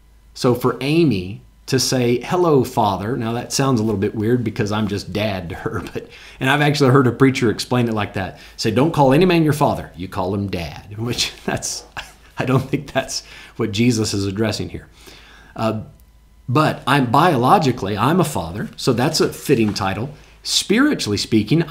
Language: English